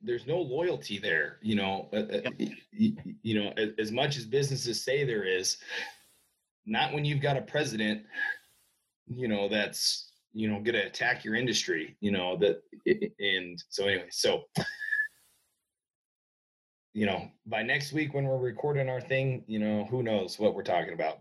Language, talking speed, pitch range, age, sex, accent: English, 170 wpm, 110-145 Hz, 30-49, male, American